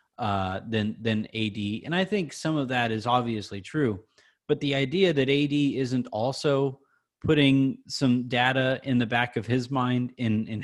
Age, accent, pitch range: 30-49, American, 120-145 Hz